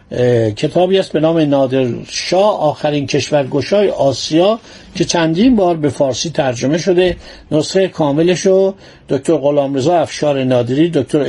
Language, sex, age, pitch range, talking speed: Persian, male, 60-79, 145-185 Hz, 120 wpm